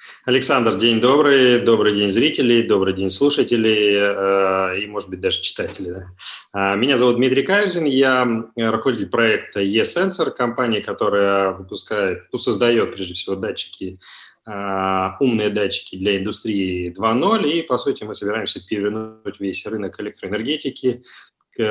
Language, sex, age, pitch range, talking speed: Russian, male, 20-39, 95-120 Hz, 135 wpm